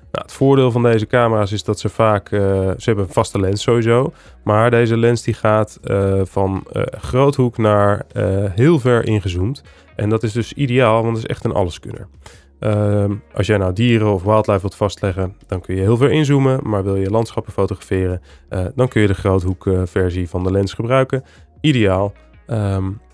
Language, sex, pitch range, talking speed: Dutch, male, 100-125 Hz, 190 wpm